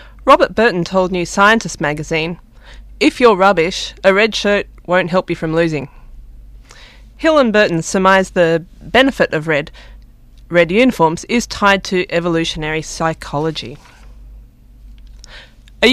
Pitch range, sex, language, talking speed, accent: 170-230 Hz, female, English, 125 wpm, Australian